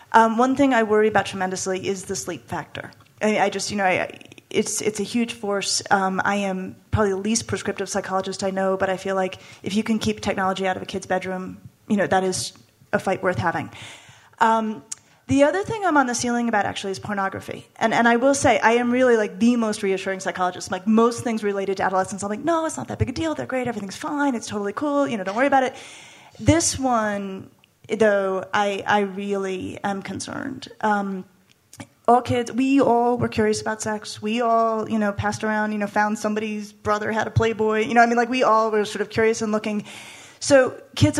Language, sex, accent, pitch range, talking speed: English, female, American, 195-235 Hz, 225 wpm